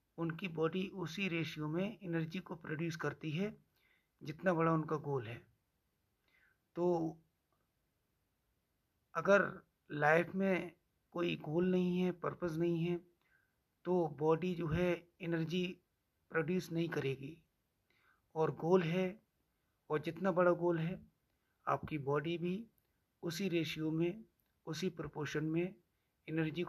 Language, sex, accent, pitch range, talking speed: Hindi, male, native, 155-180 Hz, 115 wpm